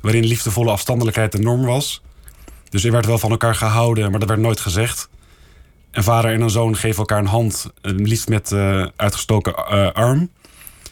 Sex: male